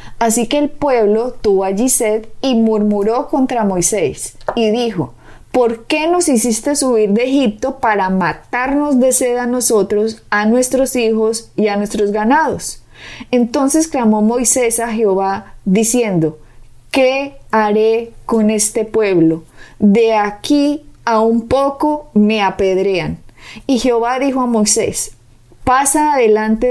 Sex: female